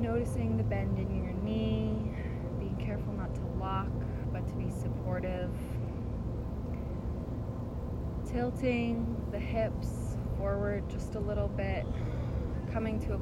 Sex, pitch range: female, 85-110 Hz